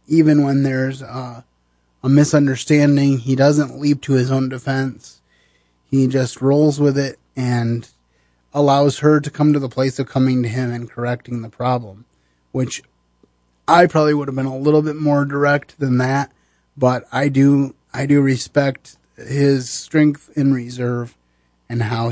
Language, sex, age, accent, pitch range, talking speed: English, male, 30-49, American, 120-140 Hz, 160 wpm